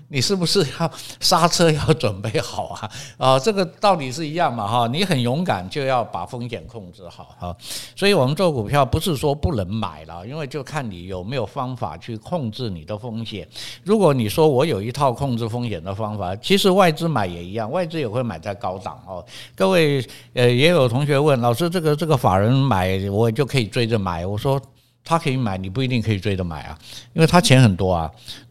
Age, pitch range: 60-79, 110-145 Hz